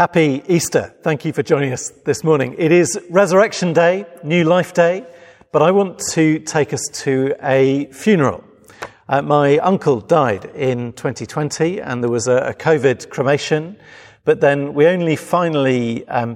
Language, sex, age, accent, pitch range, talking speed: English, male, 40-59, British, 125-160 Hz, 160 wpm